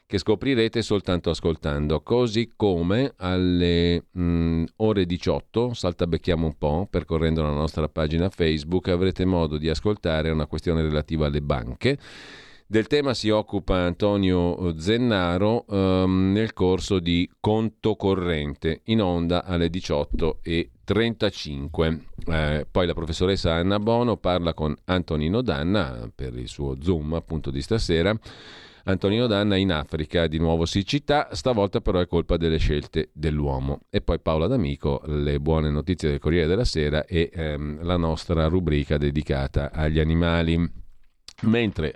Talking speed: 135 wpm